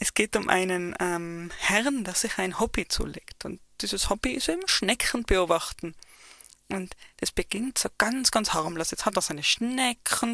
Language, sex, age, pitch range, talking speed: German, female, 20-39, 185-235 Hz, 175 wpm